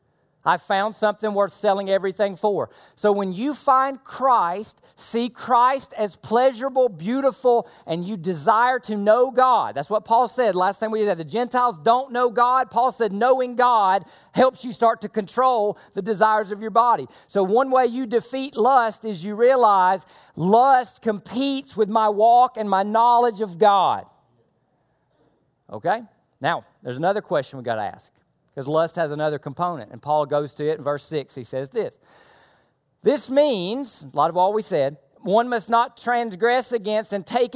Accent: American